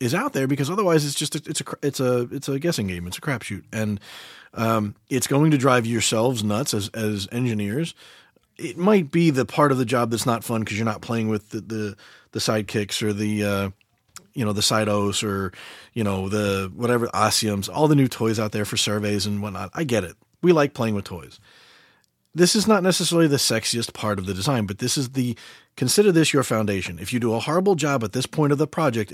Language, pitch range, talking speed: English, 110-150 Hz, 230 wpm